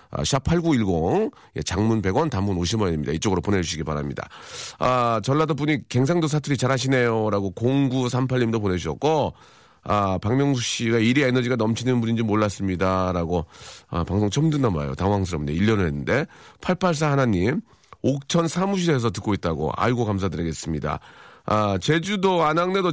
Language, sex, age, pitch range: Korean, male, 40-59, 105-170 Hz